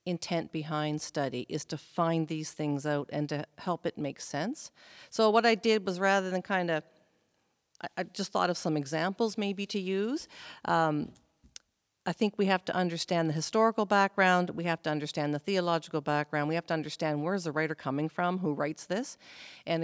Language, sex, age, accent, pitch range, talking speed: English, female, 50-69, American, 155-190 Hz, 195 wpm